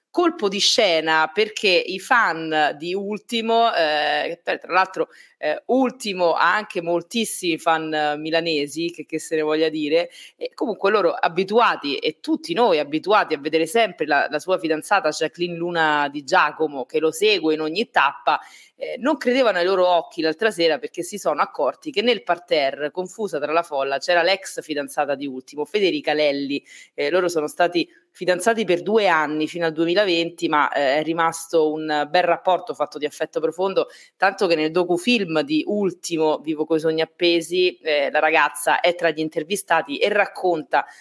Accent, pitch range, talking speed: native, 155-200 Hz, 175 wpm